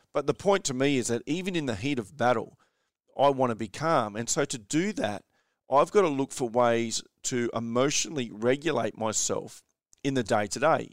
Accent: Australian